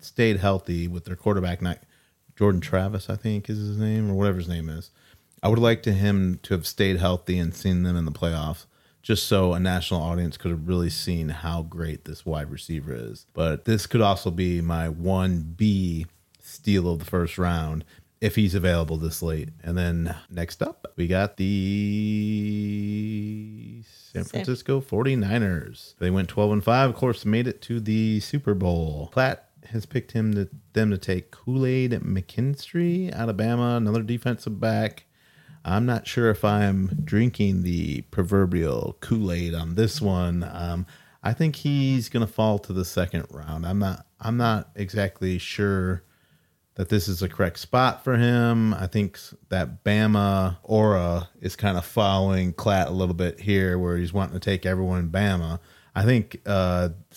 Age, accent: 30-49, American